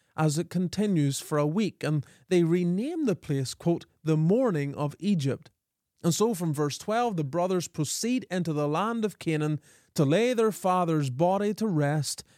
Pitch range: 150-195 Hz